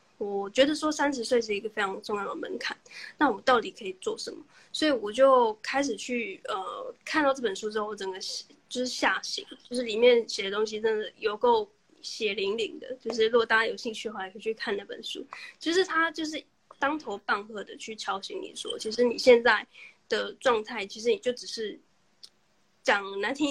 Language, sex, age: Chinese, female, 10-29